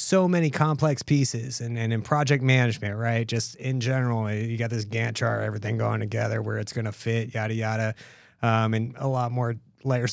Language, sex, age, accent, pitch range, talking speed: English, male, 30-49, American, 115-140 Hz, 195 wpm